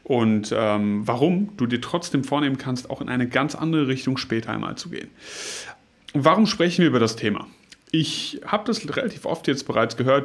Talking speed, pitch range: 185 wpm, 120-155 Hz